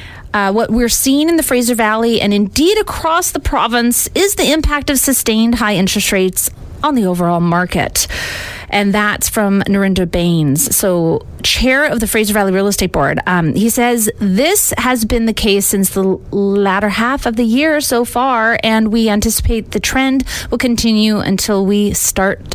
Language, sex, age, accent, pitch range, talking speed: English, female, 30-49, American, 190-240 Hz, 175 wpm